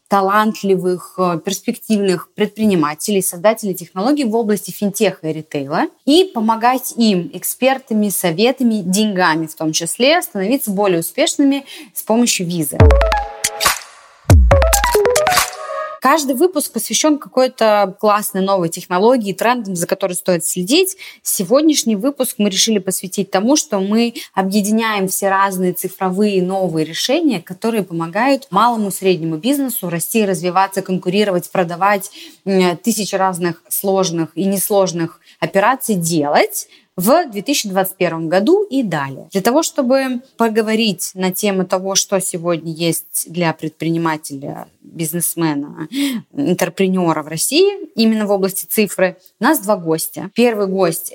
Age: 20-39